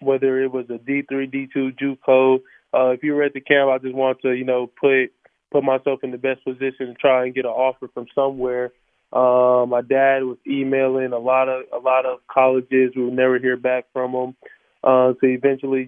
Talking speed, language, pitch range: 215 wpm, English, 125-135 Hz